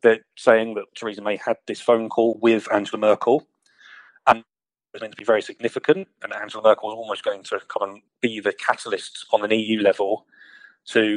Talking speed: 200 wpm